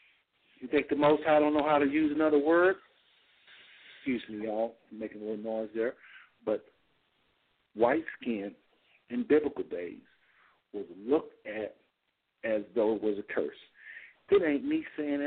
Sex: male